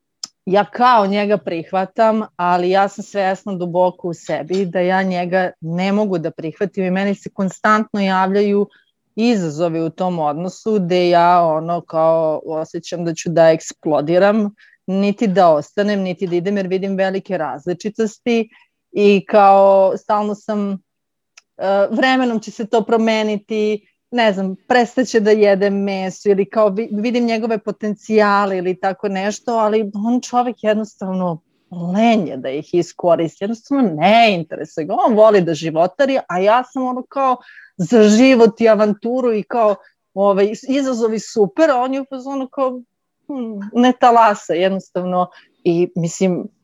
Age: 30-49